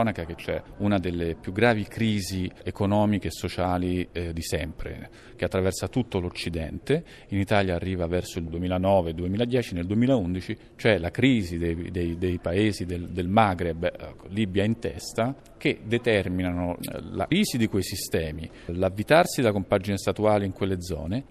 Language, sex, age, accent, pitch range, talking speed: Italian, male, 40-59, native, 90-115 Hz, 160 wpm